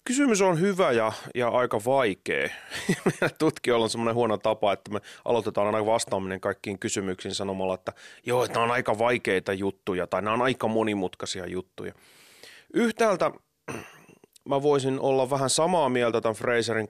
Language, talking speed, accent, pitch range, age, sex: Finnish, 155 wpm, native, 100-125 Hz, 30-49, male